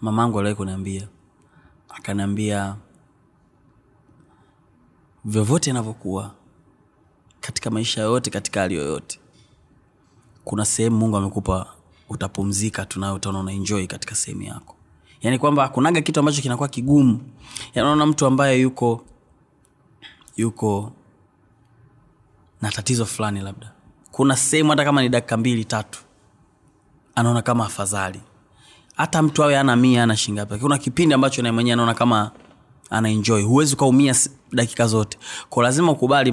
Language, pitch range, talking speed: Swahili, 105-130 Hz, 120 wpm